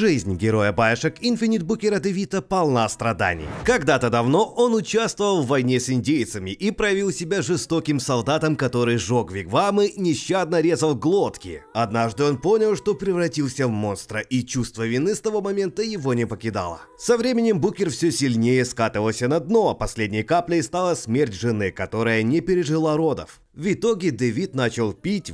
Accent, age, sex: native, 30-49, male